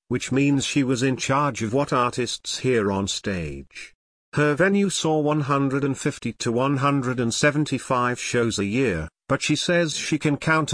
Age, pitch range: 50-69, 110-140 Hz